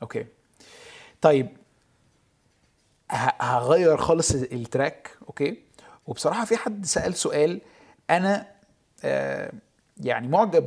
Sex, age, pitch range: male, 20-39, 130-170 Hz